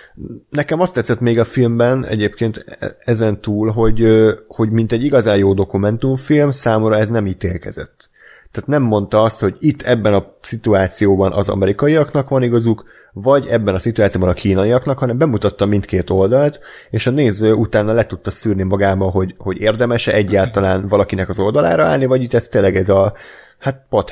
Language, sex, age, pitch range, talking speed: Hungarian, male, 30-49, 95-115 Hz, 165 wpm